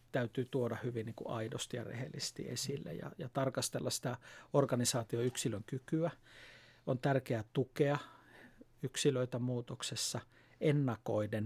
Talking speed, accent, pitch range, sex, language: 110 wpm, native, 120-150 Hz, male, Finnish